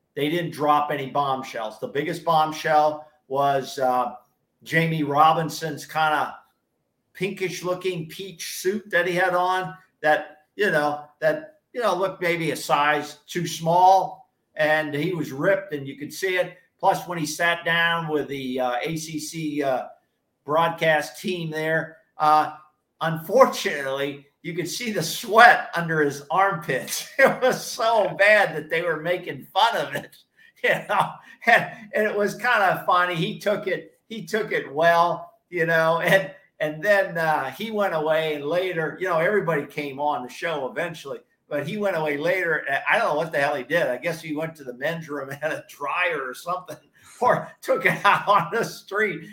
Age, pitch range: 50-69, 150-190 Hz